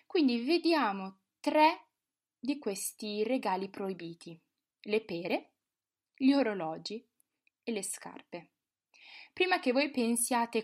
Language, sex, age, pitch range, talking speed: Italian, female, 20-39, 185-265 Hz, 100 wpm